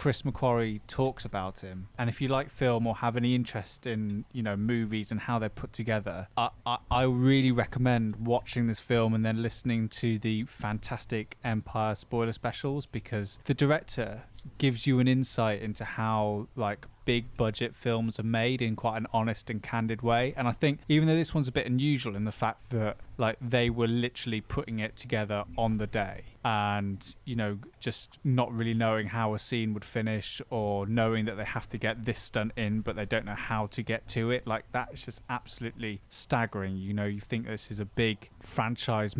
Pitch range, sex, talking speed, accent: 105-120 Hz, male, 200 wpm, British